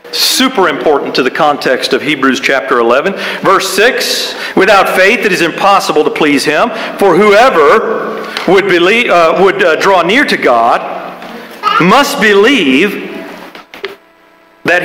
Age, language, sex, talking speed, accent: 50-69, English, male, 135 wpm, American